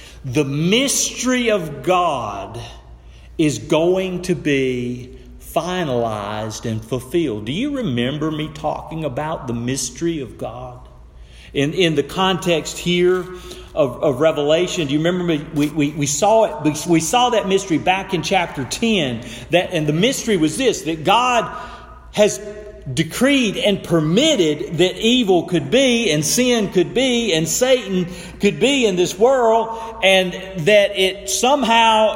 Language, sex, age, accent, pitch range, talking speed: English, male, 50-69, American, 160-240 Hz, 145 wpm